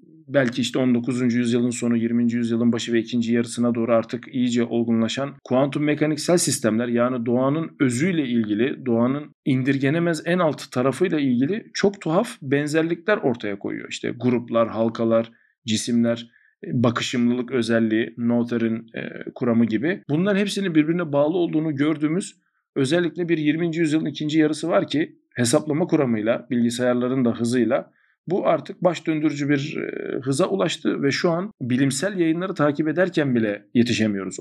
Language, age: Turkish, 50-69